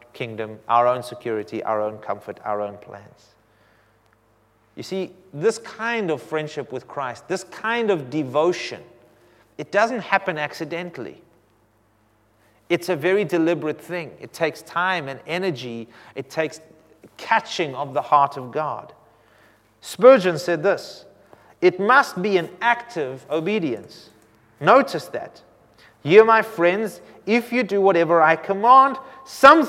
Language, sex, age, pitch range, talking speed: English, male, 30-49, 115-190 Hz, 130 wpm